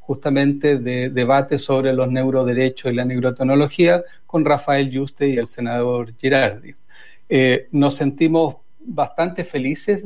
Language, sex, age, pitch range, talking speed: Spanish, male, 40-59, 135-170 Hz, 125 wpm